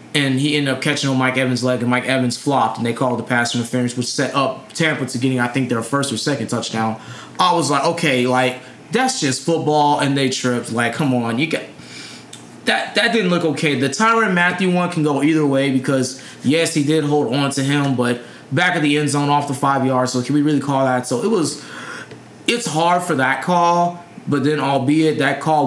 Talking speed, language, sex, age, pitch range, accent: 230 wpm, English, male, 20-39, 125-150 Hz, American